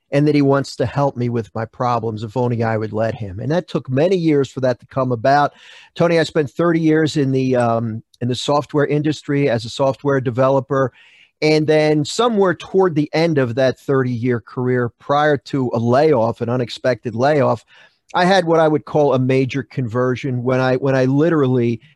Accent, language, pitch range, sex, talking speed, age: American, English, 125-150 Hz, male, 200 wpm, 40-59